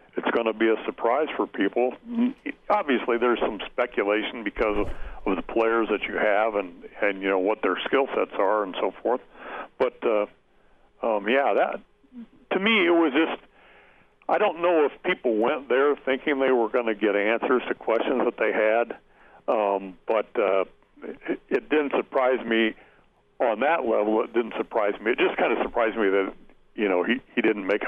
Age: 60-79